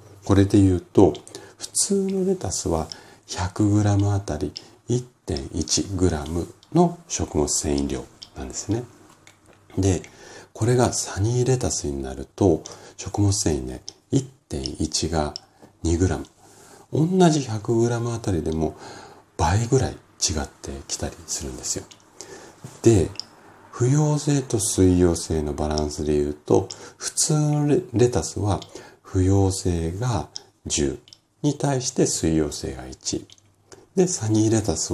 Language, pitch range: Japanese, 80-115 Hz